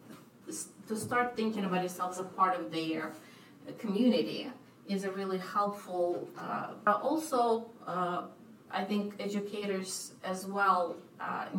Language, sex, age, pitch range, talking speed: English, female, 30-49, 180-215 Hz, 130 wpm